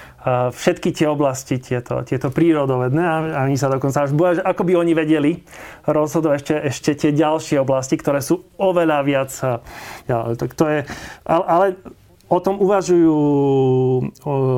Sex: male